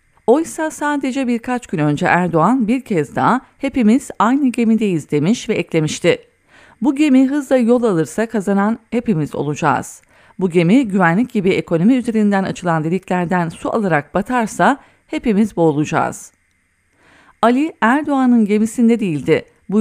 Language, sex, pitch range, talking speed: English, female, 170-235 Hz, 125 wpm